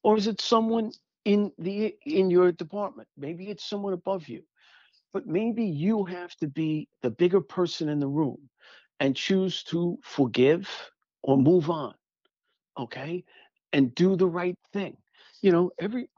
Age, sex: 50-69, male